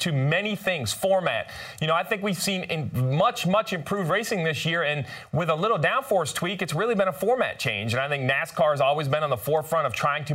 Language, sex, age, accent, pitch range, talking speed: English, male, 30-49, American, 145-195 Hz, 245 wpm